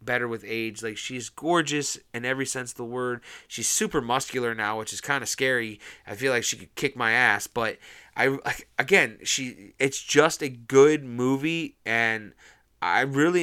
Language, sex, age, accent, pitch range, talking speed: English, male, 30-49, American, 115-145 Hz, 190 wpm